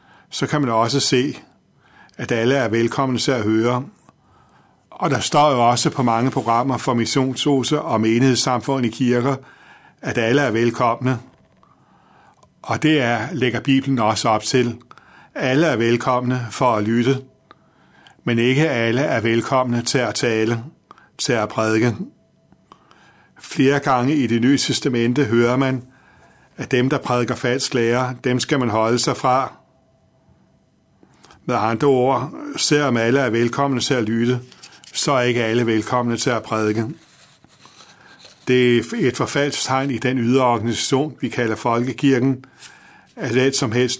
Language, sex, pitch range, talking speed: Danish, male, 115-135 Hz, 145 wpm